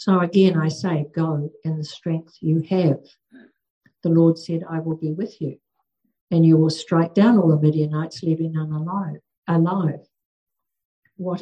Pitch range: 160-195 Hz